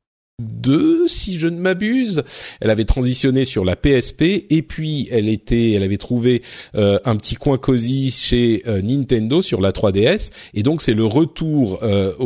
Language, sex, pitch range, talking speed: French, male, 100-130 Hz, 170 wpm